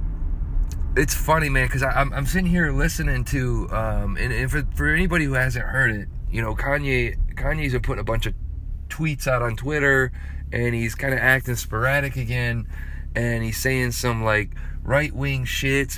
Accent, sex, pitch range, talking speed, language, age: American, male, 95-125 Hz, 165 wpm, English, 30-49